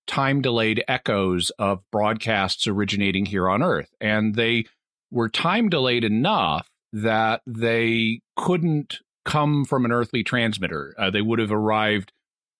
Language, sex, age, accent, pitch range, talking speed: English, male, 40-59, American, 105-130 Hz, 125 wpm